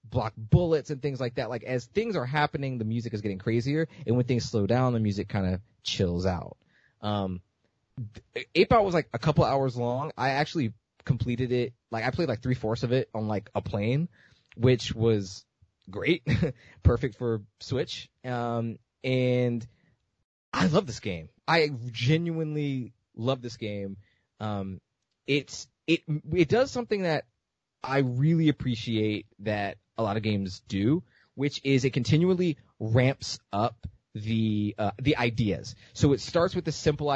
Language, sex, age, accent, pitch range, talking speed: English, male, 20-39, American, 110-135 Hz, 160 wpm